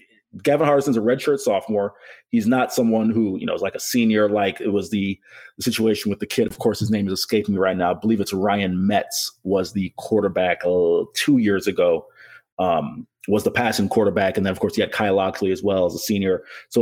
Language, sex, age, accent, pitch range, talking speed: English, male, 30-49, American, 105-160 Hz, 230 wpm